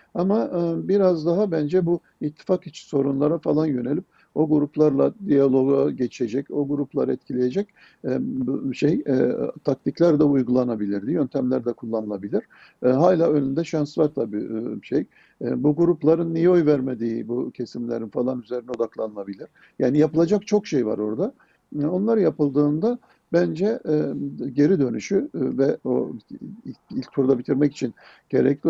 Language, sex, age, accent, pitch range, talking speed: Turkish, male, 50-69, native, 120-165 Hz, 125 wpm